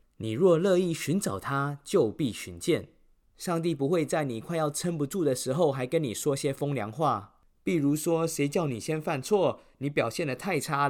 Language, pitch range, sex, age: Chinese, 115-160 Hz, male, 20-39